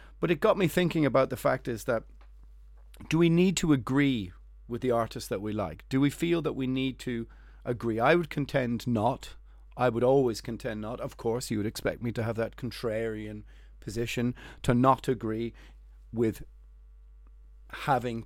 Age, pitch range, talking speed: 30-49, 105-135 Hz, 180 wpm